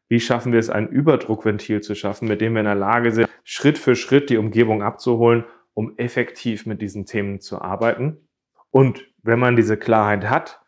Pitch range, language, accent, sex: 110-125 Hz, German, German, male